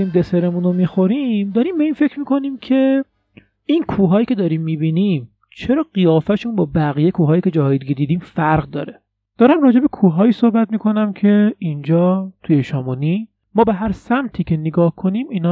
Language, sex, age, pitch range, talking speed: Persian, male, 30-49, 145-215 Hz, 160 wpm